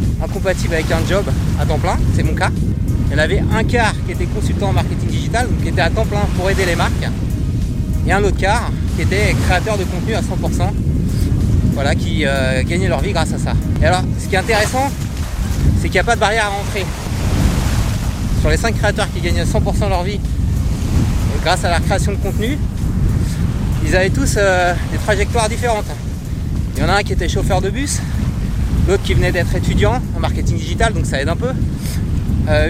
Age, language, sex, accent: 30-49, French, male, French